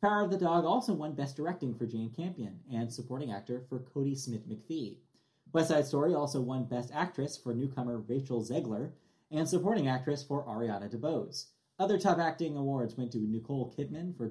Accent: American